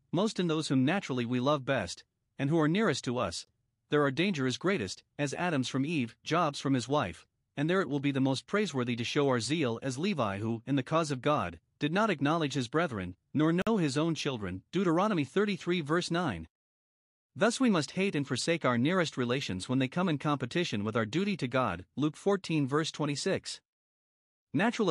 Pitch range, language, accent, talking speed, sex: 125-170 Hz, English, American, 205 wpm, male